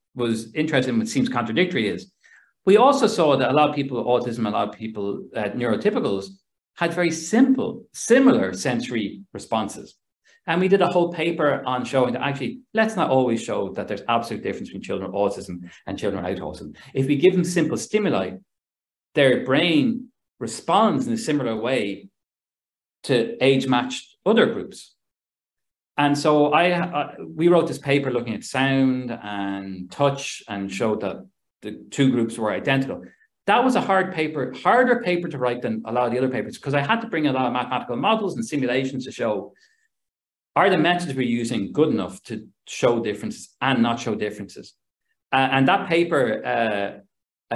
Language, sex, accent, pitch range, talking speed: English, male, Irish, 110-170 Hz, 180 wpm